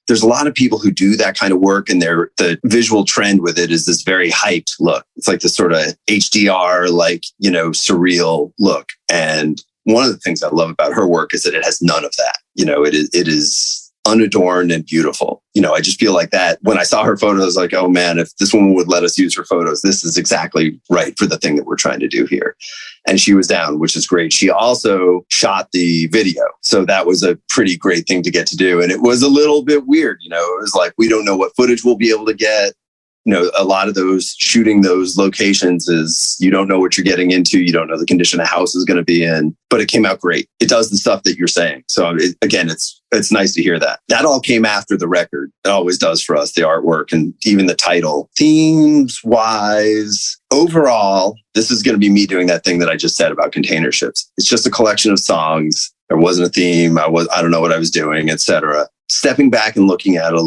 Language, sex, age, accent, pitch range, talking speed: English, male, 30-49, American, 85-105 Hz, 255 wpm